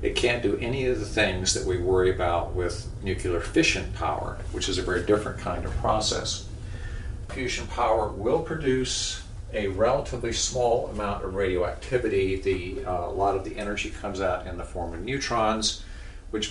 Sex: male